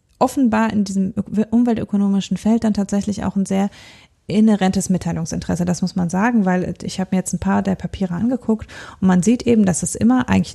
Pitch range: 175-205 Hz